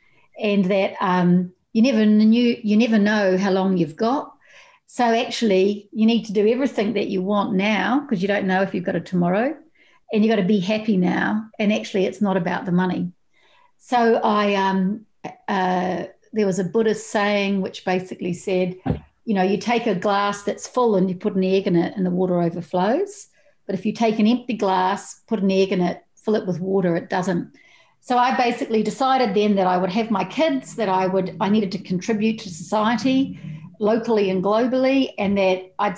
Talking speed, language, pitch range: 205 wpm, English, 185-225 Hz